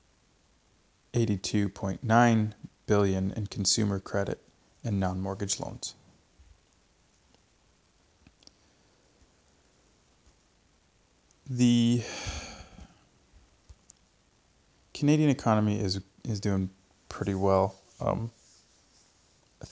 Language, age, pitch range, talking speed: English, 20-39, 95-110 Hz, 60 wpm